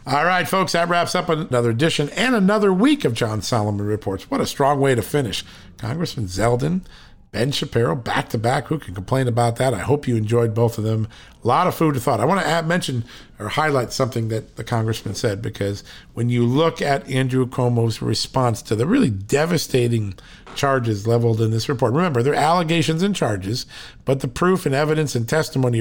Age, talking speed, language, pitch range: 50-69, 200 wpm, English, 110-150 Hz